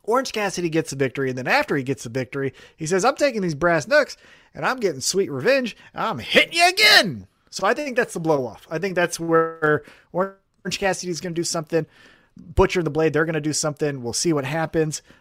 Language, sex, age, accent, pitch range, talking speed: English, male, 30-49, American, 140-180 Hz, 230 wpm